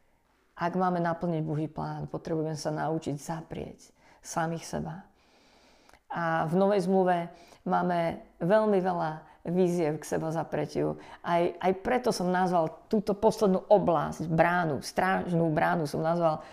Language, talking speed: Slovak, 125 wpm